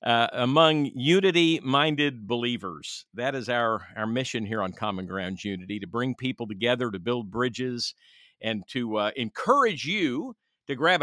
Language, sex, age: English, male, 50-69